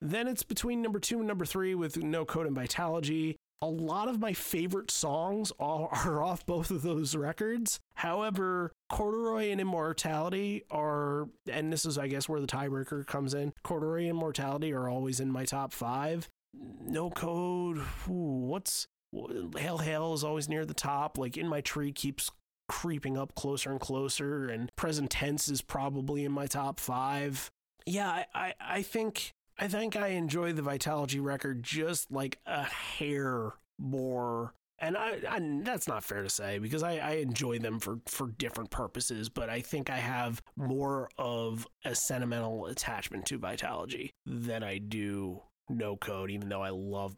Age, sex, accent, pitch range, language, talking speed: 30-49, male, American, 125-165 Hz, English, 170 wpm